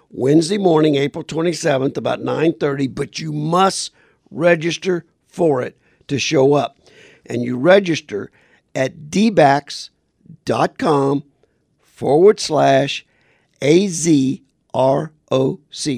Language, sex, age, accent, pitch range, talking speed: English, male, 50-69, American, 145-190 Hz, 85 wpm